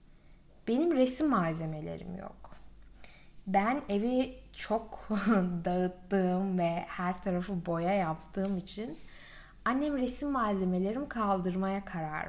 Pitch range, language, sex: 180-225 Hz, Turkish, female